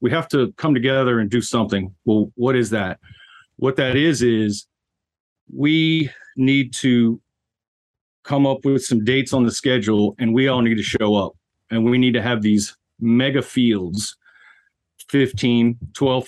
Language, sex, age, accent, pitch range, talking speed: English, male, 40-59, American, 110-130 Hz, 160 wpm